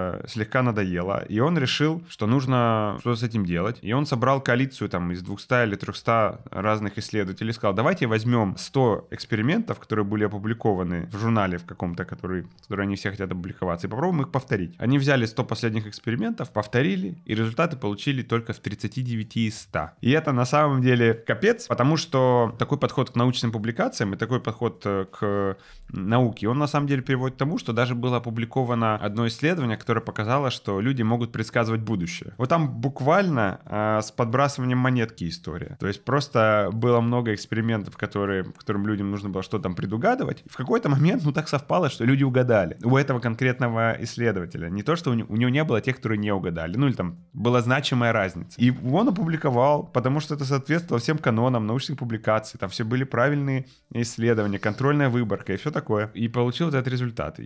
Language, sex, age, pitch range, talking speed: Ukrainian, male, 20-39, 105-130 Hz, 185 wpm